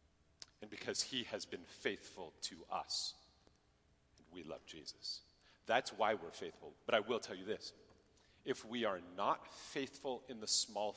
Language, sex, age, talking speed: English, male, 40-59, 160 wpm